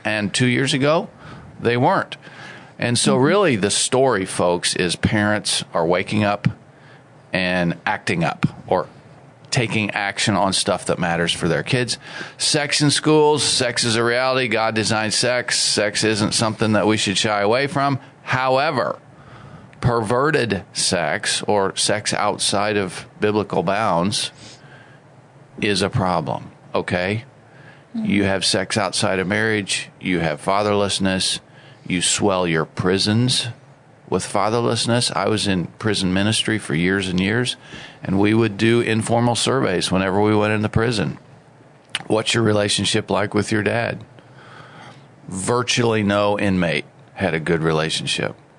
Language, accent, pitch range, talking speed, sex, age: English, American, 100-135 Hz, 135 wpm, male, 40-59